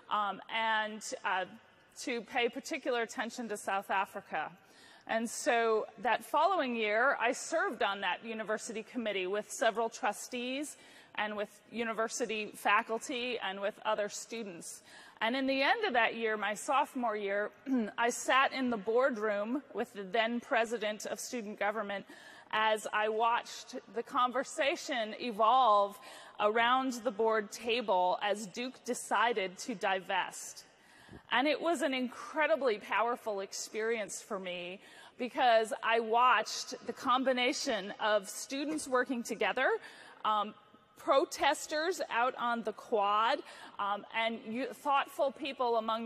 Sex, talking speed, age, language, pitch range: female, 130 wpm, 30-49, English, 210-255 Hz